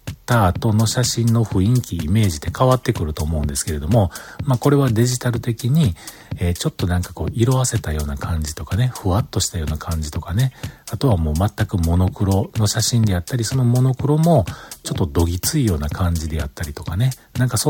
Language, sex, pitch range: Japanese, male, 85-130 Hz